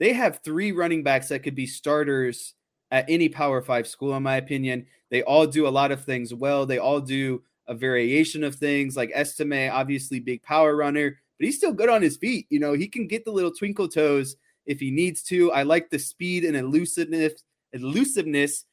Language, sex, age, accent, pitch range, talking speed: English, male, 20-39, American, 135-155 Hz, 210 wpm